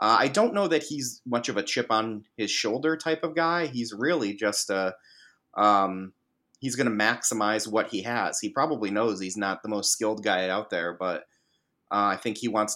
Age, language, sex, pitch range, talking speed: 30-49, English, male, 100-115 Hz, 205 wpm